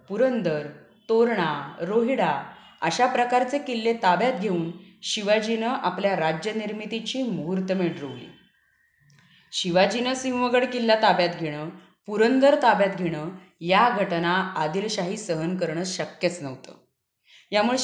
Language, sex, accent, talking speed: Marathi, female, native, 100 wpm